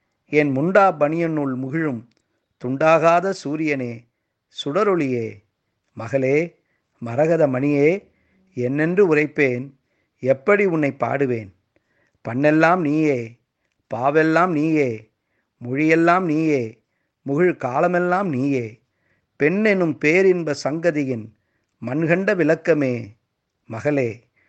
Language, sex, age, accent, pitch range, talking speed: Tamil, male, 50-69, native, 120-160 Hz, 70 wpm